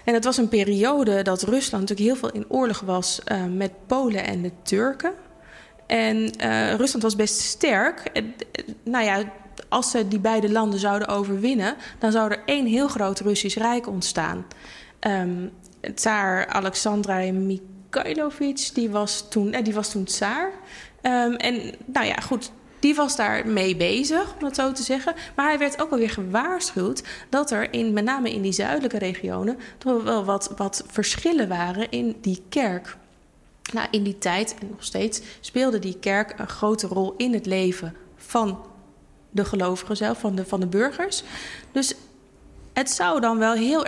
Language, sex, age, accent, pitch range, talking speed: Dutch, female, 20-39, Dutch, 200-255 Hz, 170 wpm